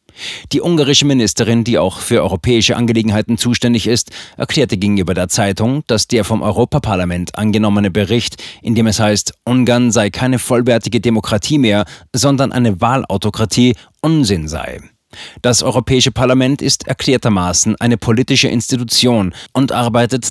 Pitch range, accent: 105-130 Hz, German